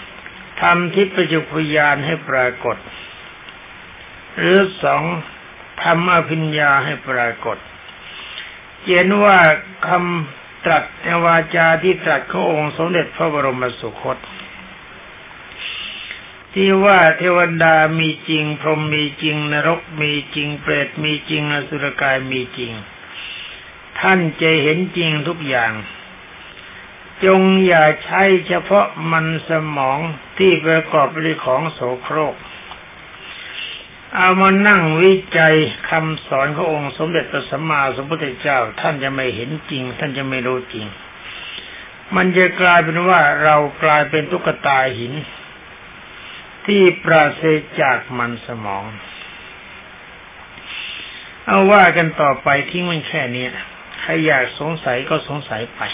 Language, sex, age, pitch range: Thai, male, 60-79, 140-175 Hz